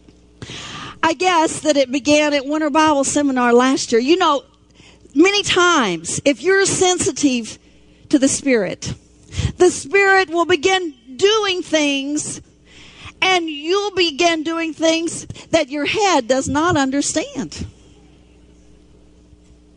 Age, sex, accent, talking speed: 50-69, female, American, 115 wpm